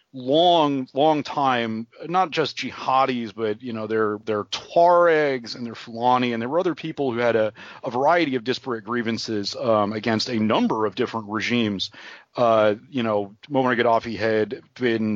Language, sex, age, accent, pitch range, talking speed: English, male, 30-49, American, 110-130 Hz, 165 wpm